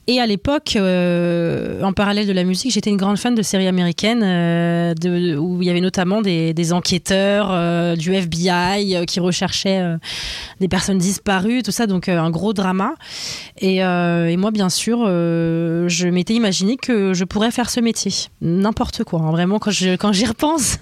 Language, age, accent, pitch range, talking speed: French, 20-39, French, 170-210 Hz, 200 wpm